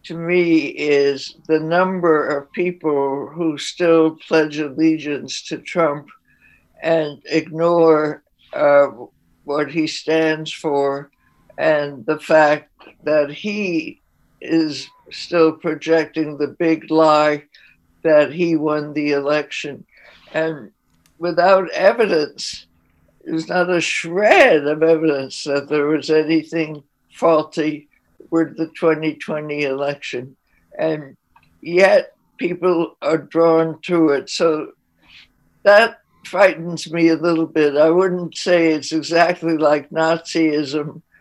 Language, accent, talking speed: English, American, 110 wpm